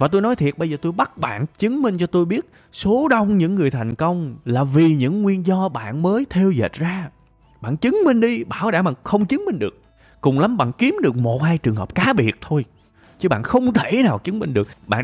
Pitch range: 130-200 Hz